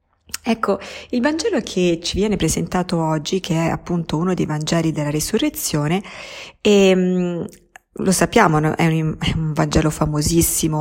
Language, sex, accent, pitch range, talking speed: Italian, female, native, 155-185 Hz, 145 wpm